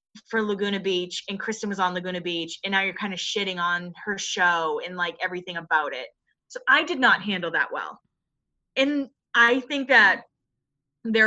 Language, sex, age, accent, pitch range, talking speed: English, female, 20-39, American, 190-255 Hz, 185 wpm